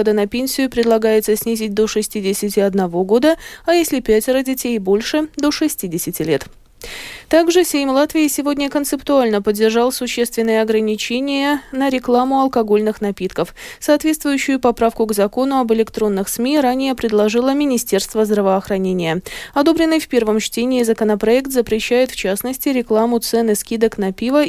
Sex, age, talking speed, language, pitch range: female, 20-39, 125 wpm, Russian, 215-280 Hz